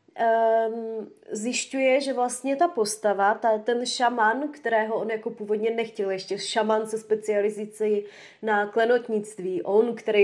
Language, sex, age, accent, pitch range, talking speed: Czech, female, 20-39, native, 215-270 Hz, 130 wpm